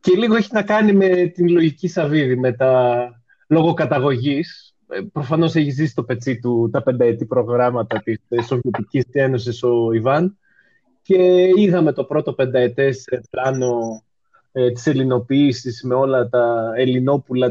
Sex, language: male, Greek